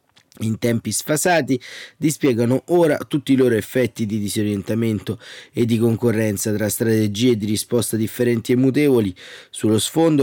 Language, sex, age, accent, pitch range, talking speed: Italian, male, 30-49, native, 110-130 Hz, 135 wpm